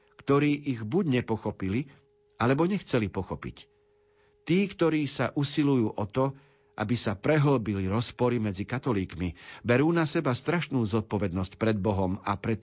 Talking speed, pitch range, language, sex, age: 135 wpm, 105-140 Hz, Slovak, male, 50-69